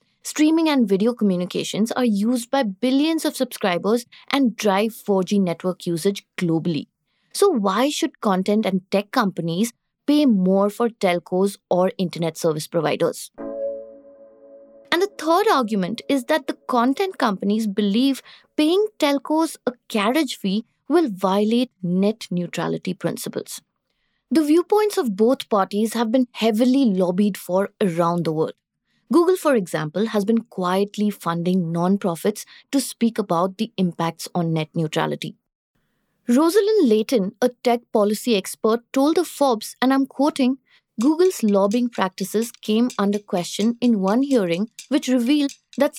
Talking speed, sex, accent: 135 wpm, female, Indian